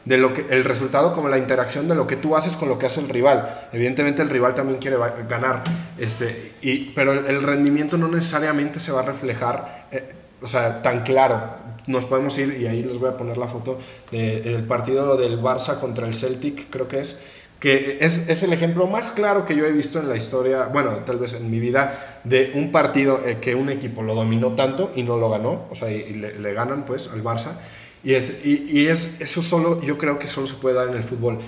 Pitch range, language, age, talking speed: 125-145 Hz, Spanish, 20-39, 240 wpm